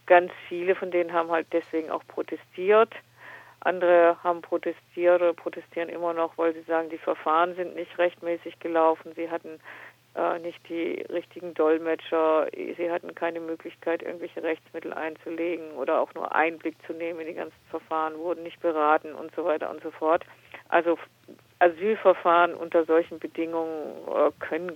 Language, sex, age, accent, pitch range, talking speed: German, female, 50-69, German, 160-170 Hz, 160 wpm